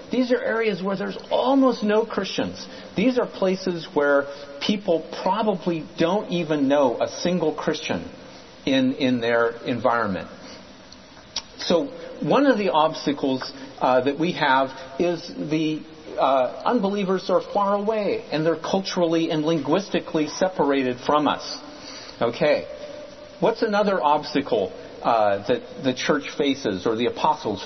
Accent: American